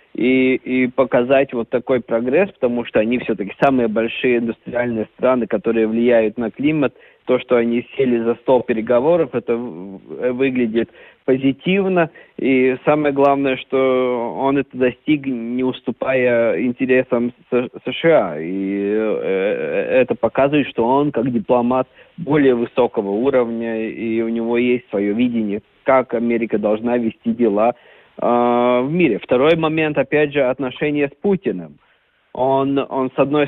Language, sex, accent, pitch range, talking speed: Russian, male, native, 120-150 Hz, 130 wpm